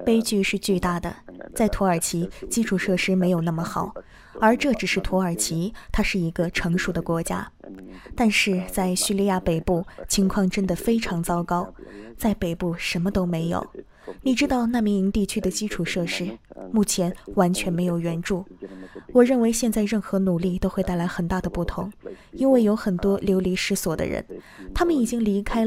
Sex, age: female, 20-39